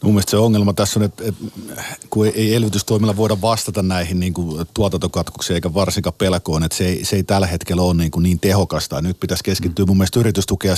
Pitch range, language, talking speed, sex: 85-105 Hz, Finnish, 190 wpm, male